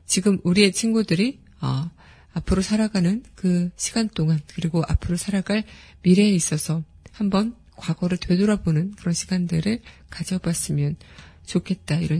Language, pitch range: Korean, 170-205 Hz